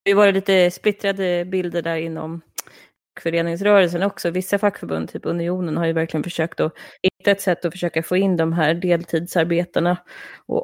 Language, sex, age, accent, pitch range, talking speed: Swedish, female, 30-49, native, 170-195 Hz, 165 wpm